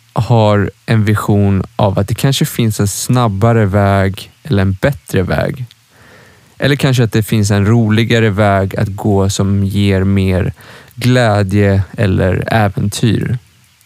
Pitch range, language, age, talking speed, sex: 100-120 Hz, Swedish, 20-39, 135 wpm, male